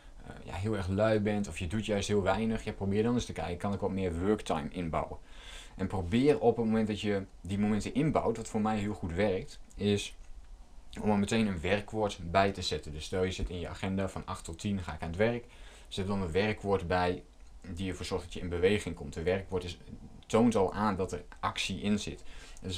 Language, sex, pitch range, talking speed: Dutch, male, 90-105 Hz, 235 wpm